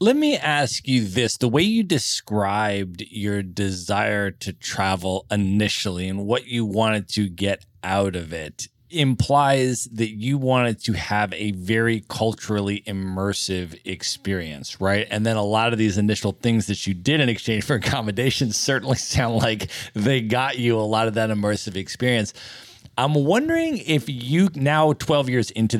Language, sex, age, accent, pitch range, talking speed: English, male, 30-49, American, 105-130 Hz, 165 wpm